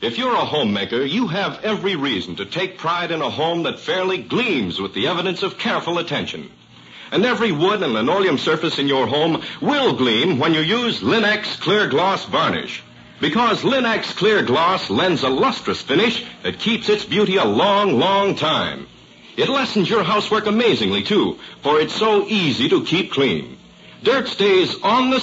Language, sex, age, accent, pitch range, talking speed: English, male, 60-79, American, 185-215 Hz, 175 wpm